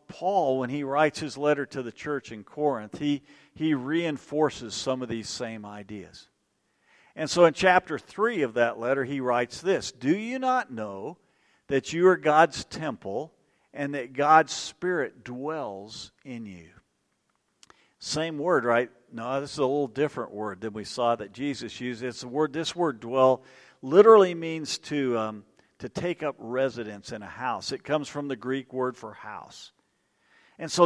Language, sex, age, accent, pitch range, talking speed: English, male, 50-69, American, 120-155 Hz, 175 wpm